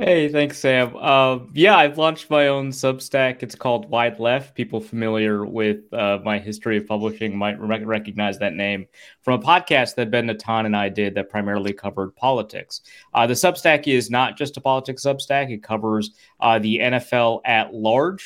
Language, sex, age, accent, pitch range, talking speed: English, male, 30-49, American, 105-130 Hz, 180 wpm